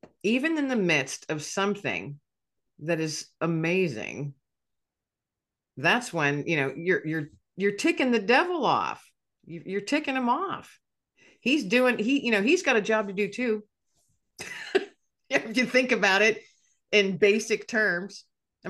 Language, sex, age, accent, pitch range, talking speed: English, female, 50-69, American, 140-205 Hz, 145 wpm